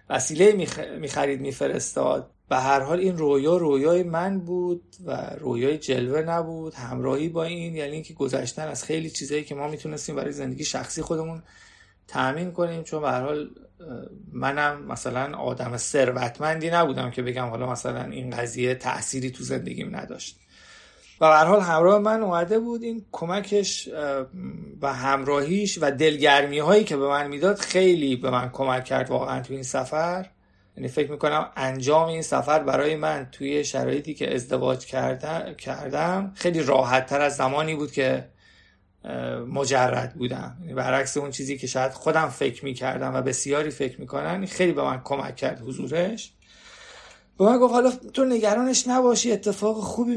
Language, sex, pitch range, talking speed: Persian, male, 140-205 Hz, 160 wpm